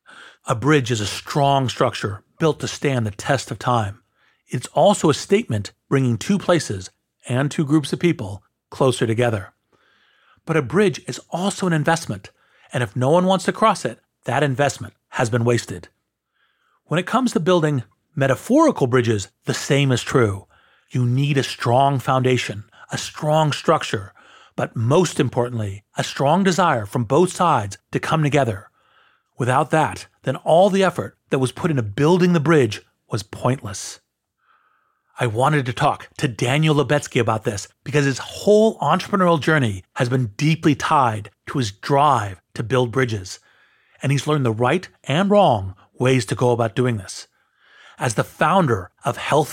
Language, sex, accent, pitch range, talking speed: English, male, American, 115-155 Hz, 165 wpm